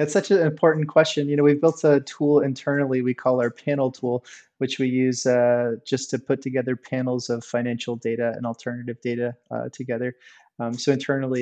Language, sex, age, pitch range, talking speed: English, male, 30-49, 125-140 Hz, 195 wpm